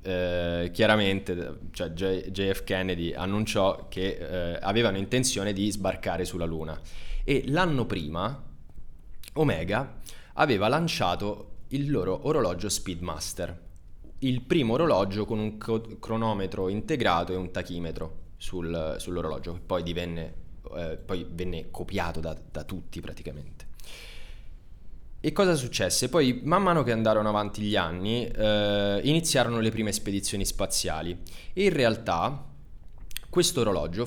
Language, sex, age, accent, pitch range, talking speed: Italian, male, 20-39, native, 85-115 Hz, 120 wpm